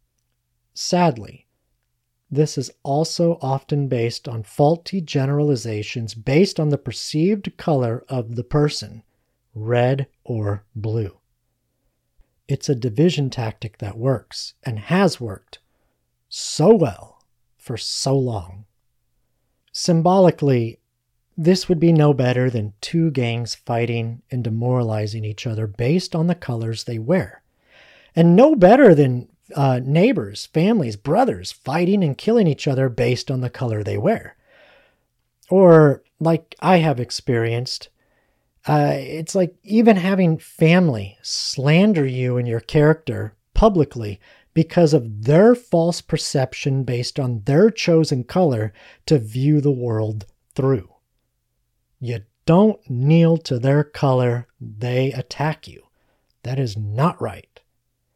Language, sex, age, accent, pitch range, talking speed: English, male, 40-59, American, 120-160 Hz, 120 wpm